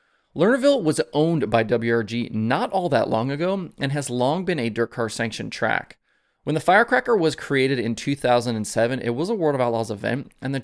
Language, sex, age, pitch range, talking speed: English, male, 30-49, 115-155 Hz, 195 wpm